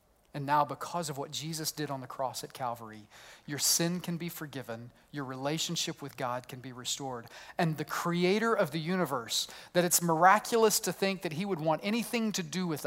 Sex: male